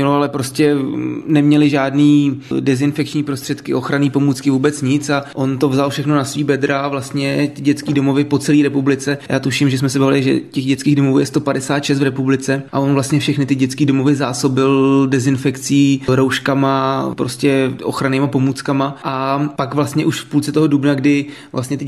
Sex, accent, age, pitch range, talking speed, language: male, native, 20-39, 130-140 Hz, 175 wpm, Czech